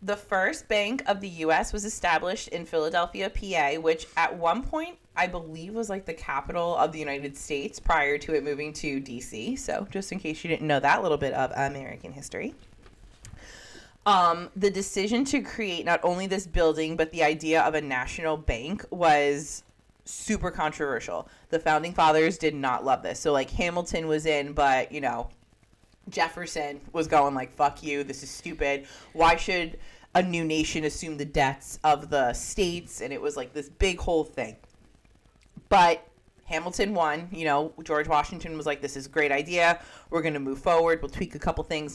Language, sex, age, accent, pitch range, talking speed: English, female, 20-39, American, 145-180 Hz, 185 wpm